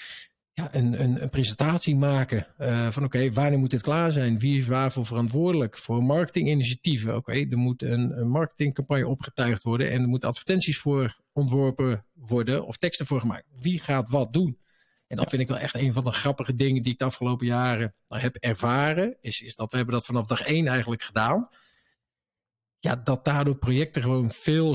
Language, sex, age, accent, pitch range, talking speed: Dutch, male, 50-69, Dutch, 120-145 Hz, 185 wpm